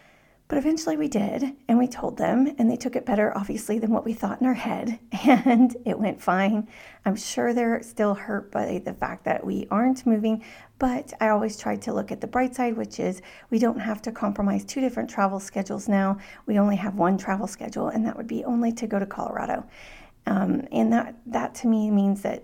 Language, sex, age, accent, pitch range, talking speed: English, female, 40-59, American, 200-245 Hz, 220 wpm